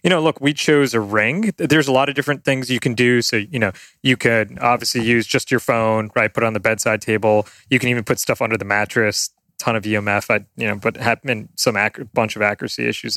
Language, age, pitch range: English, 20-39, 105-125 Hz